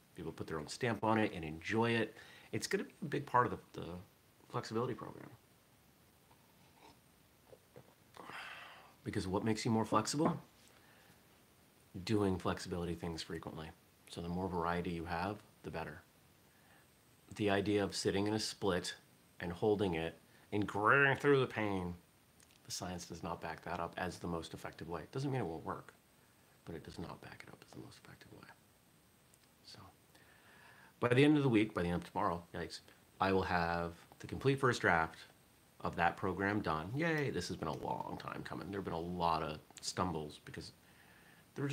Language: English